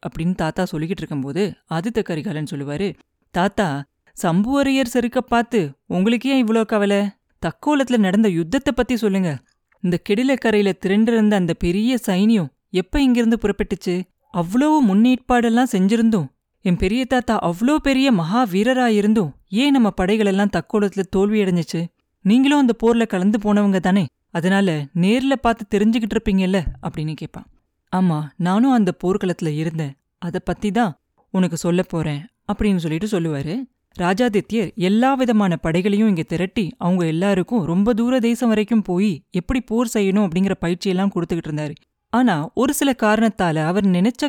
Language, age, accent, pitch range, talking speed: Tamil, 30-49, native, 180-235 Hz, 125 wpm